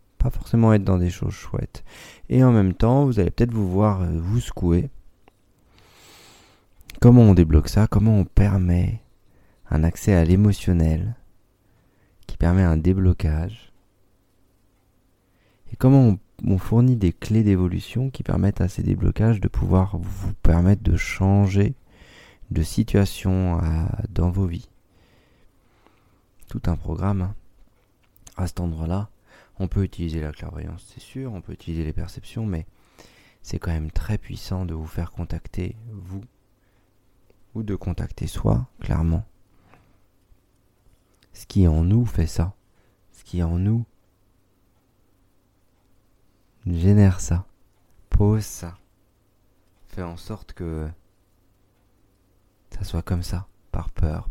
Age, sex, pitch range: 40-59, male, 90-105 Hz